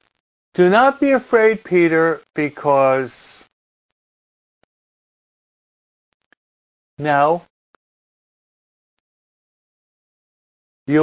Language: English